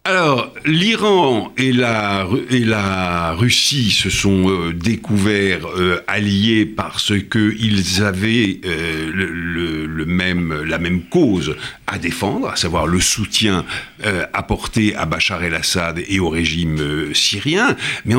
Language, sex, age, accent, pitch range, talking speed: French, male, 60-79, French, 95-135 Hz, 135 wpm